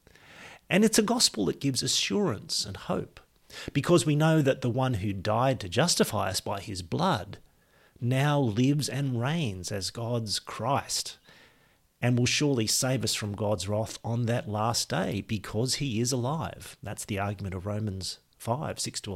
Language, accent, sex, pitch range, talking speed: English, Australian, male, 110-145 Hz, 170 wpm